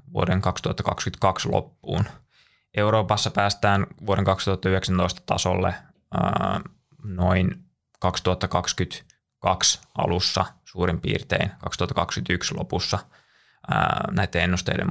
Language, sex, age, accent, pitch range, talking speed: Finnish, male, 20-39, native, 90-100 Hz, 75 wpm